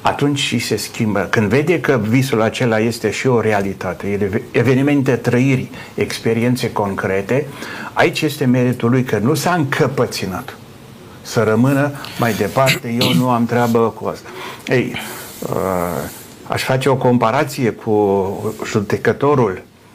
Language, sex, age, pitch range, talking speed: Romanian, male, 60-79, 110-140 Hz, 125 wpm